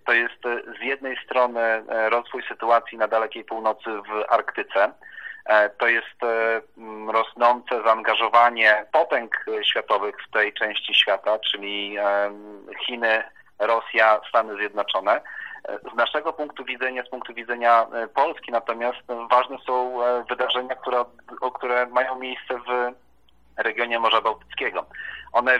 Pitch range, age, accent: 110-125 Hz, 40-59, native